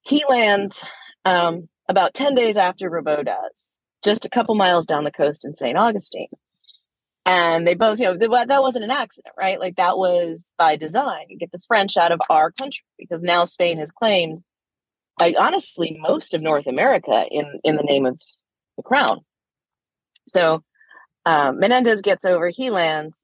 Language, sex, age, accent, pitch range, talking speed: English, female, 30-49, American, 165-235 Hz, 175 wpm